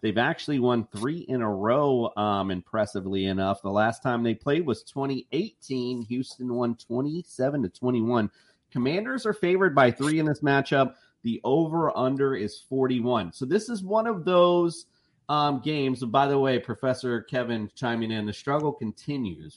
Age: 30-49